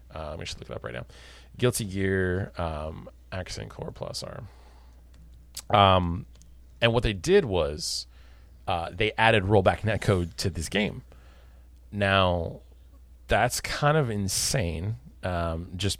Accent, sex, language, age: American, male, English, 30-49